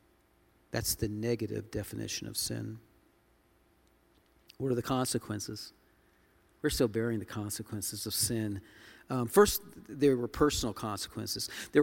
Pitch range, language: 115-150 Hz, English